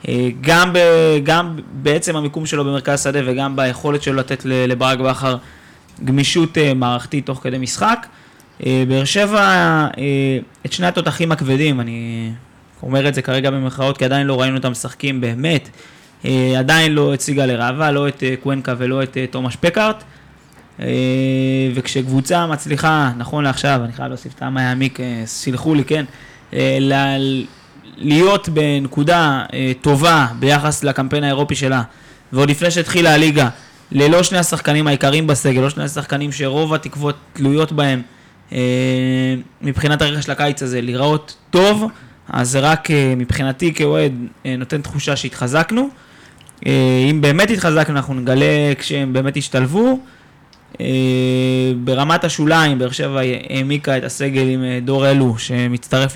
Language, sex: Hebrew, male